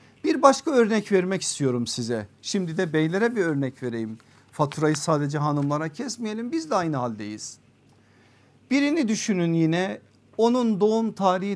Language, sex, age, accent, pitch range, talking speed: Turkish, male, 50-69, native, 135-200 Hz, 135 wpm